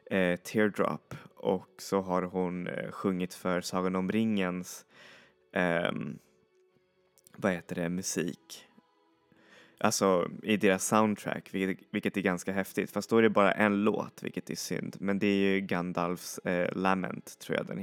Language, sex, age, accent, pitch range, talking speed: Swedish, male, 20-39, native, 90-100 Hz, 140 wpm